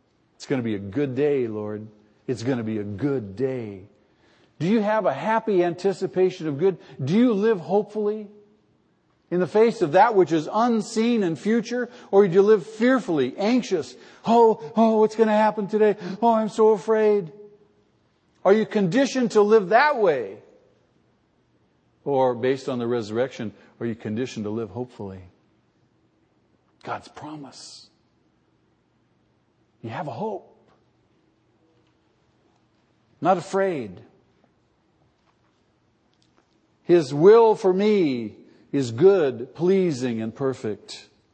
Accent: American